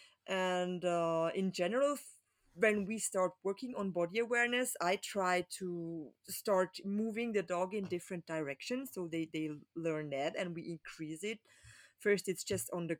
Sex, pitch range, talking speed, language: female, 170-215 Hz, 160 wpm, English